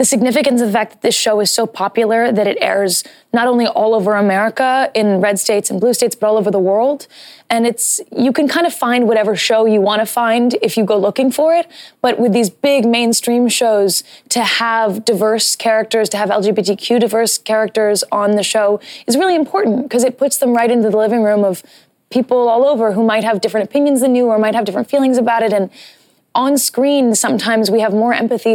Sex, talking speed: female, 220 wpm